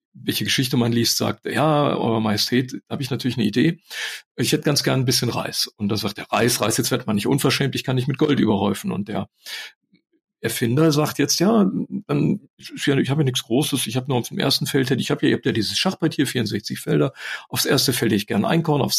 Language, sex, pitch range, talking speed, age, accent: German, male, 125-160 Hz, 230 wpm, 40-59, German